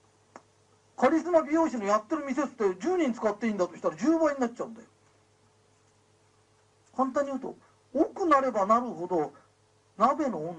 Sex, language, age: male, Japanese, 40-59